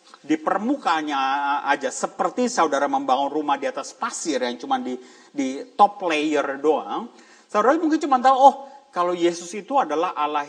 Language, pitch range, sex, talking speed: Indonesian, 180-275 Hz, male, 155 wpm